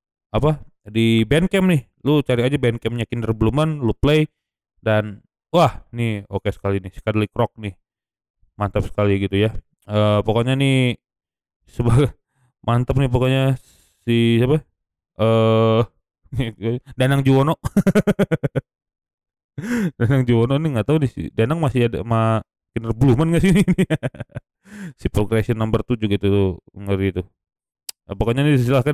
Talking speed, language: 135 wpm, Indonesian